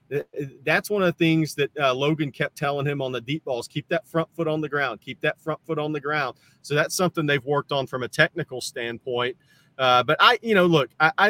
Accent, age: American, 40-59